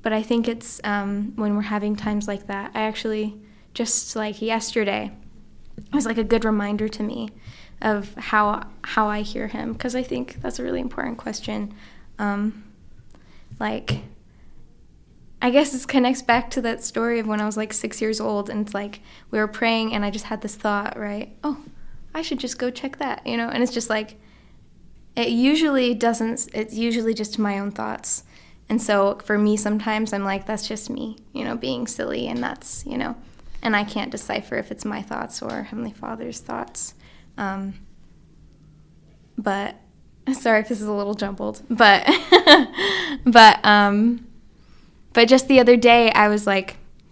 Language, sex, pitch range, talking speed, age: English, female, 205-235 Hz, 180 wpm, 10-29